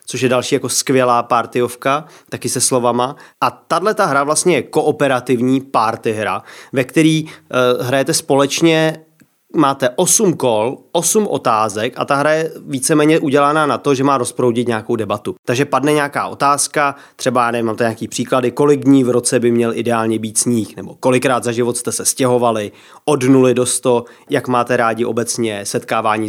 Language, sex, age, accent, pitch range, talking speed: Czech, male, 30-49, native, 120-160 Hz, 165 wpm